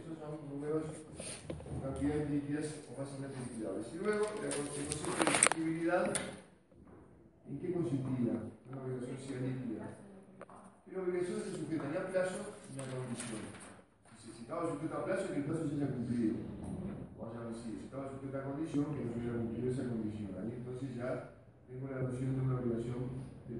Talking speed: 180 wpm